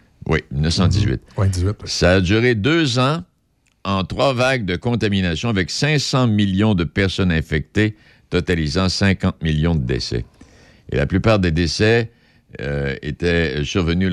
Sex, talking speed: male, 135 wpm